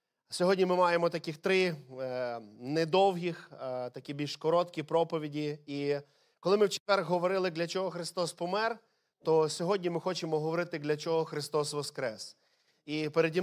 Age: 20-39